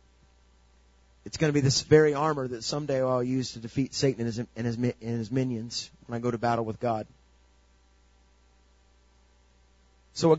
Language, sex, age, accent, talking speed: English, male, 30-49, American, 175 wpm